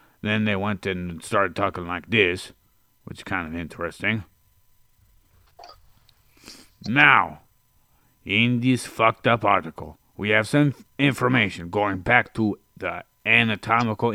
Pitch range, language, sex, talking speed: 90-115 Hz, English, male, 120 wpm